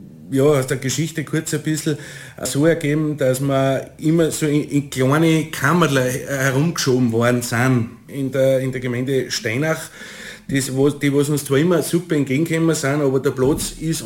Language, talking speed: German, 170 wpm